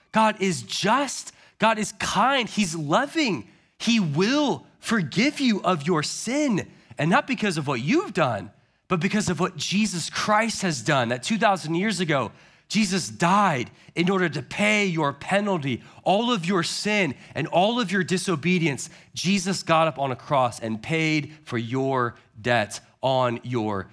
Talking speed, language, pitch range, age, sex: 160 wpm, English, 110-180 Hz, 30-49, male